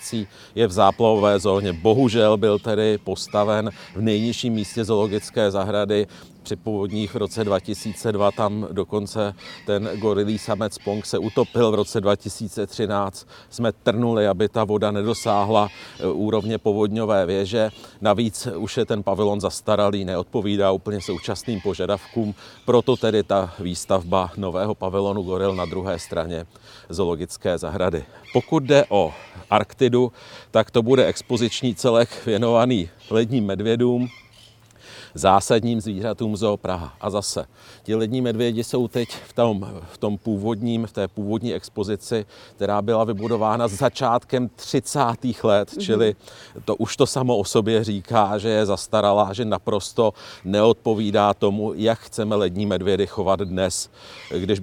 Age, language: 40-59, Czech